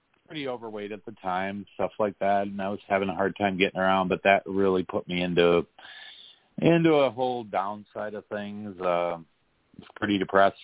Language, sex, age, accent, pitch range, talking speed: English, male, 40-59, American, 95-115 Hz, 190 wpm